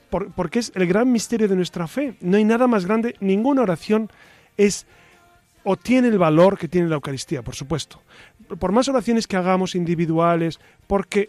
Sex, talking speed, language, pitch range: male, 175 wpm, Spanish, 170-210 Hz